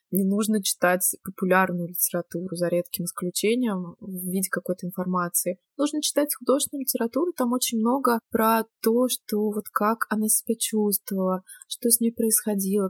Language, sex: Russian, female